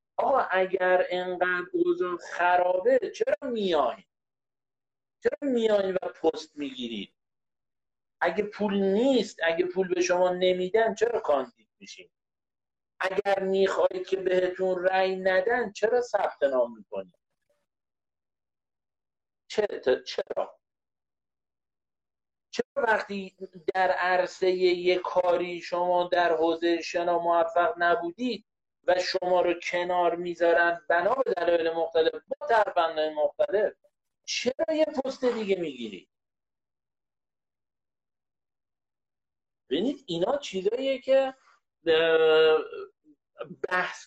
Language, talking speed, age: Persian, 95 wpm, 50-69